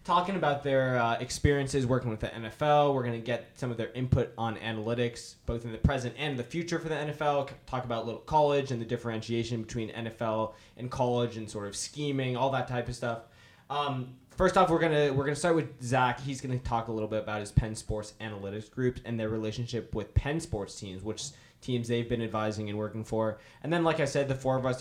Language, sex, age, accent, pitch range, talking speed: English, male, 10-29, American, 110-135 Hz, 230 wpm